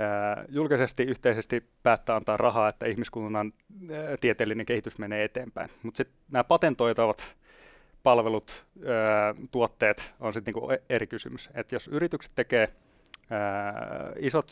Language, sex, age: Finnish, male, 30-49